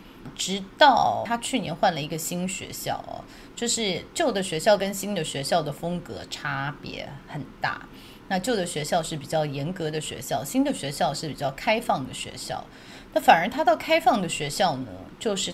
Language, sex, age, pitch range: Chinese, female, 30-49, 155-210 Hz